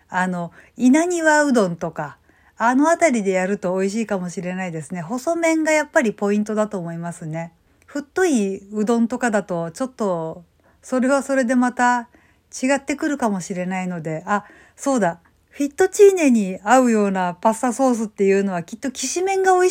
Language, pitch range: Japanese, 185-250 Hz